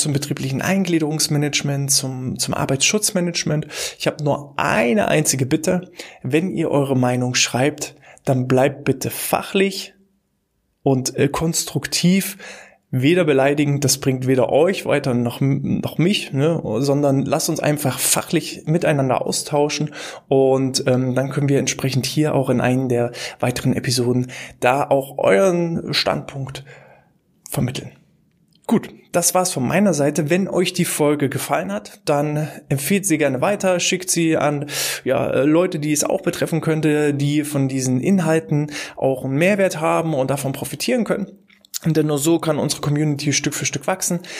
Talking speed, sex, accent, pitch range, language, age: 145 wpm, male, German, 135-165 Hz, German, 20-39